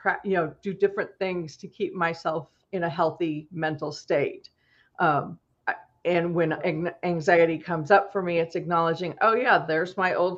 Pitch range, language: 165-195 Hz, English